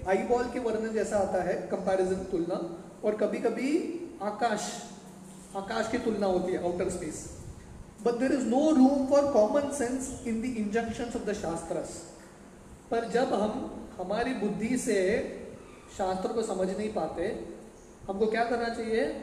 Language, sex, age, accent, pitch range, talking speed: English, male, 20-39, Indian, 195-235 Hz, 145 wpm